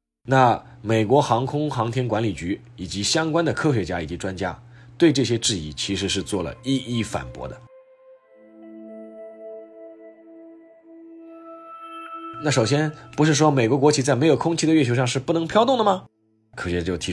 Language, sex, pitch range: Chinese, male, 110-155 Hz